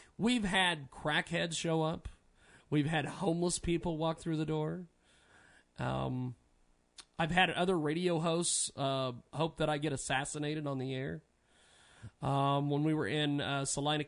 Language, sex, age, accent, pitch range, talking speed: English, male, 40-59, American, 140-175 Hz, 150 wpm